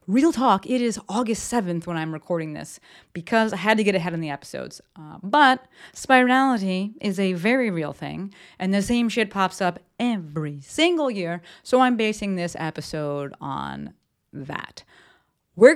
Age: 30-49